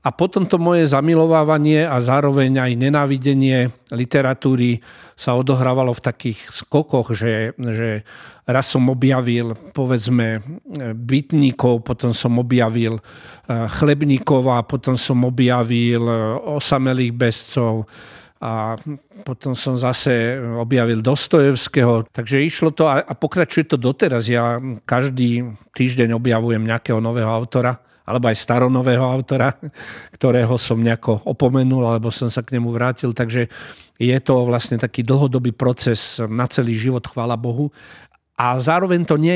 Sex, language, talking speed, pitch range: male, Slovak, 125 wpm, 115-135 Hz